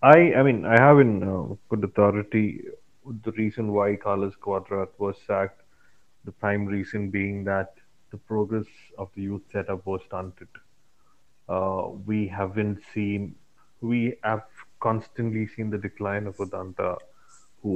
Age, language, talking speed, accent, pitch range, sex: 30-49, English, 140 wpm, Indian, 95-105 Hz, male